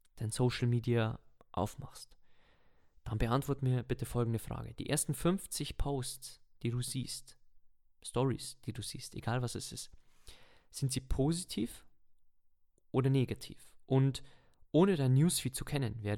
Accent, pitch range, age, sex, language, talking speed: German, 115-135 Hz, 20-39, male, German, 135 wpm